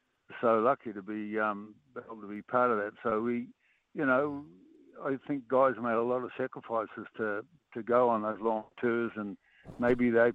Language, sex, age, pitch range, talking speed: English, male, 60-79, 105-125 Hz, 190 wpm